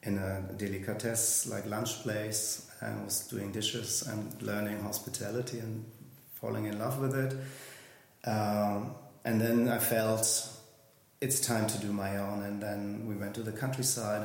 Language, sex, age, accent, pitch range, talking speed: English, male, 30-49, German, 105-120 Hz, 155 wpm